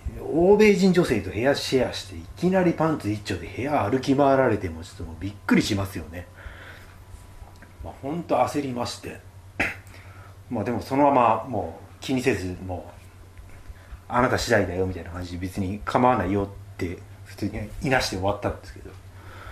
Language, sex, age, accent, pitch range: Japanese, male, 30-49, native, 95-115 Hz